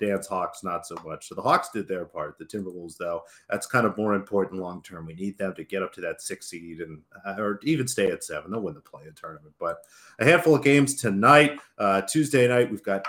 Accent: American